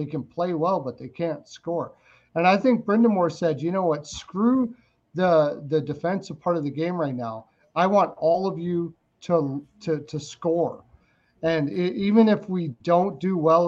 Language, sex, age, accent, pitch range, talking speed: English, male, 40-59, American, 145-185 Hz, 190 wpm